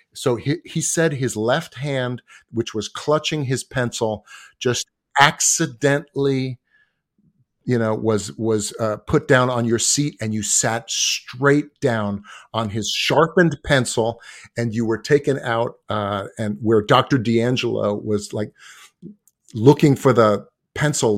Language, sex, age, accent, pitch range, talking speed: English, male, 50-69, American, 115-165 Hz, 140 wpm